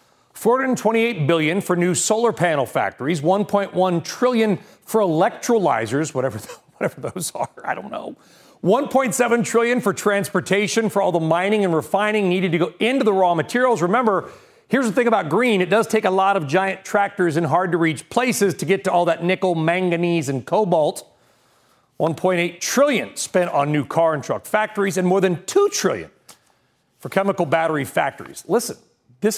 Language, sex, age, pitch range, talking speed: English, male, 40-59, 170-220 Hz, 170 wpm